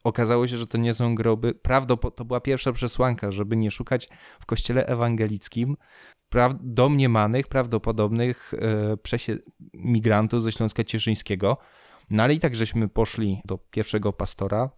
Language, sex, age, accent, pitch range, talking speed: Polish, male, 20-39, native, 105-125 Hz, 145 wpm